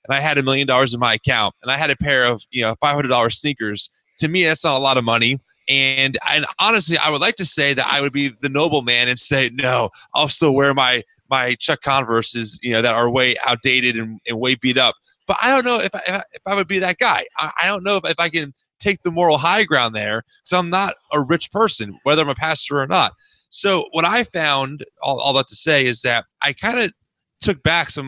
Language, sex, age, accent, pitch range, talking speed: English, male, 30-49, American, 130-170 Hz, 260 wpm